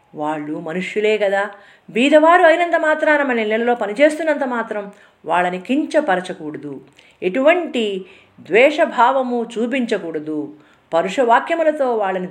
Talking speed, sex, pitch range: 85 wpm, female, 165-245 Hz